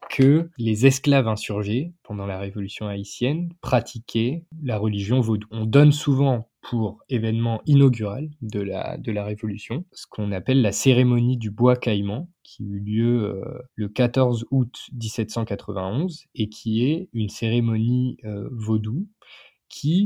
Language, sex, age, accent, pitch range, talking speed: French, male, 20-39, French, 105-135 Hz, 140 wpm